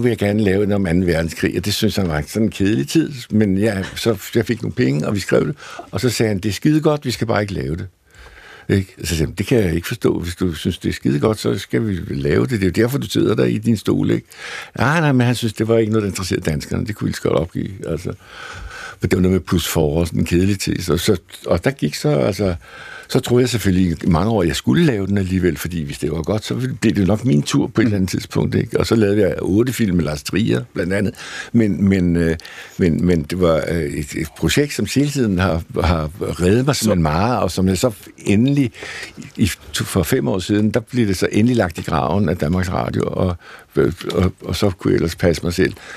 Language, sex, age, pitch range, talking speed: Danish, male, 60-79, 90-115 Hz, 260 wpm